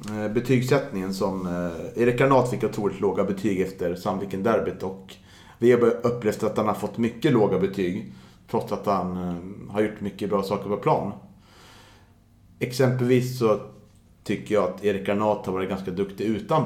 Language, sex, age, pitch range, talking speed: Swedish, male, 30-49, 95-115 Hz, 150 wpm